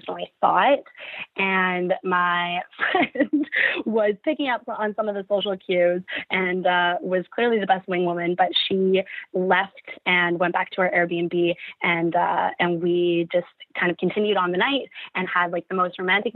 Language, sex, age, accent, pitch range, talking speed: English, female, 20-39, American, 180-220 Hz, 180 wpm